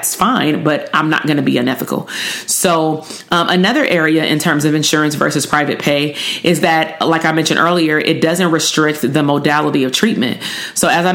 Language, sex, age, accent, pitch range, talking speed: English, female, 30-49, American, 155-175 Hz, 190 wpm